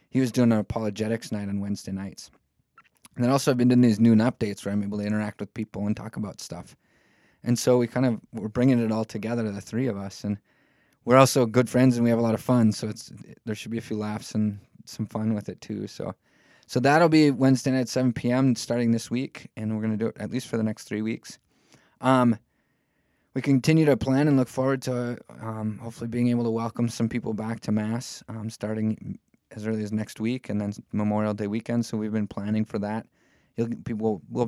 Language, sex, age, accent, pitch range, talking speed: English, male, 20-39, American, 105-125 Hz, 230 wpm